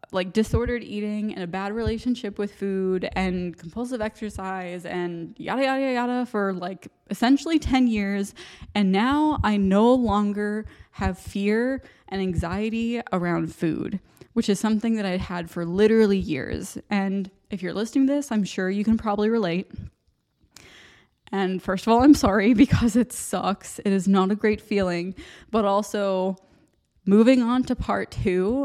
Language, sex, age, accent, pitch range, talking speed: English, female, 20-39, American, 185-225 Hz, 155 wpm